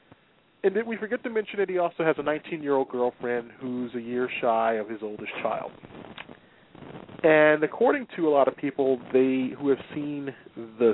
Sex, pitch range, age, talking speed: male, 120-160 Hz, 40-59, 190 wpm